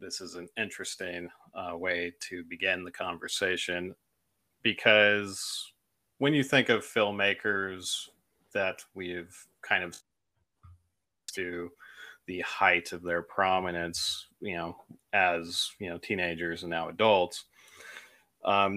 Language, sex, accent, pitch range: English, male, American, 90-105 Hz